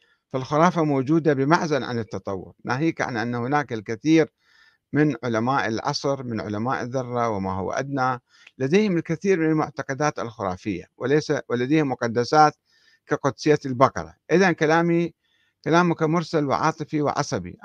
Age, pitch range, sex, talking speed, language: 60-79, 120-155 Hz, male, 120 wpm, Arabic